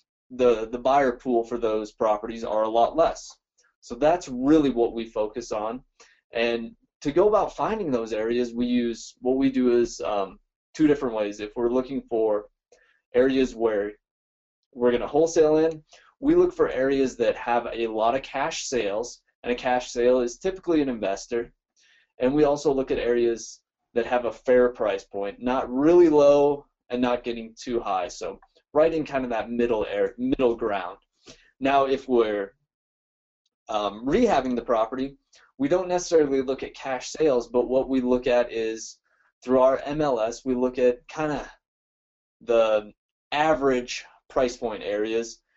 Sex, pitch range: male, 115-140 Hz